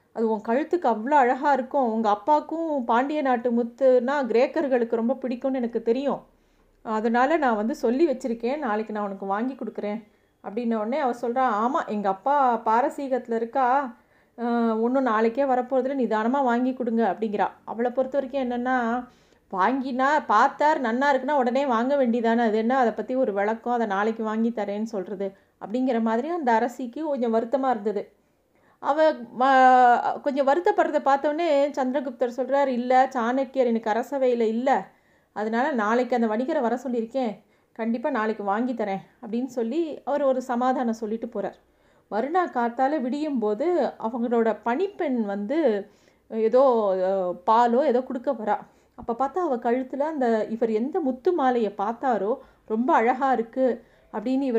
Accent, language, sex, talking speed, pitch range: native, Tamil, female, 130 wpm, 225-270 Hz